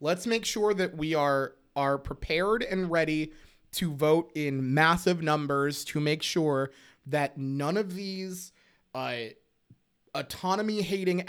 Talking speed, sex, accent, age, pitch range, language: 130 wpm, male, American, 30-49, 135-165 Hz, English